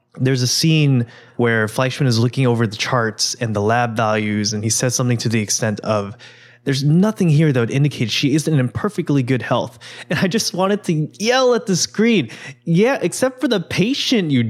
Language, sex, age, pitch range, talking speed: English, male, 20-39, 115-155 Hz, 205 wpm